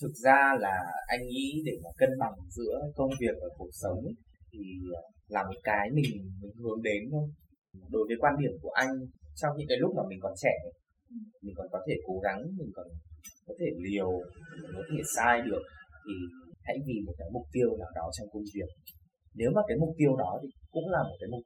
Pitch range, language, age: 100-155 Hz, Vietnamese, 20-39